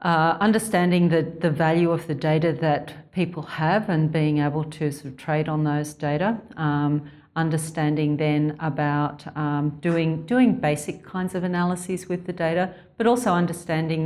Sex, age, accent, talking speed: female, 50-69, Australian, 160 wpm